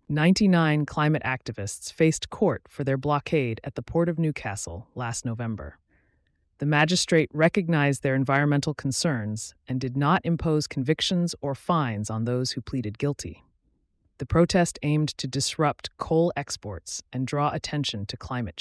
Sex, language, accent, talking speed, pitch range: female, English, American, 145 wpm, 115-165 Hz